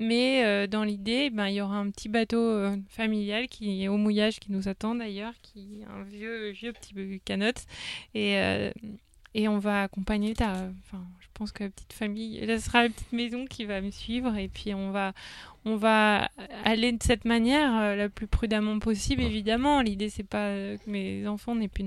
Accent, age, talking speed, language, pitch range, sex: French, 20-39, 210 wpm, French, 205-235 Hz, female